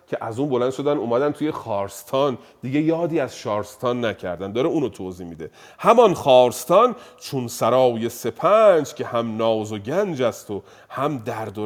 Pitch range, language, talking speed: 115-165 Hz, Persian, 165 wpm